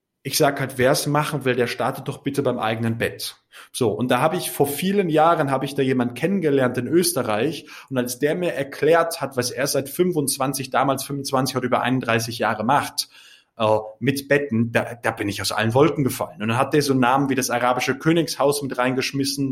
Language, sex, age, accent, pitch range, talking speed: German, male, 30-49, German, 125-150 Hz, 210 wpm